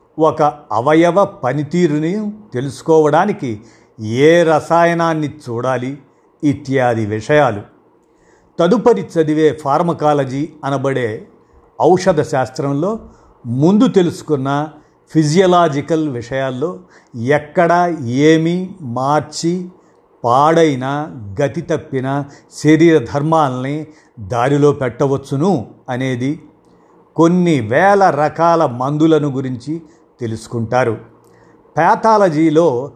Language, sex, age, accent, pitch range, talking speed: Telugu, male, 50-69, native, 135-165 Hz, 65 wpm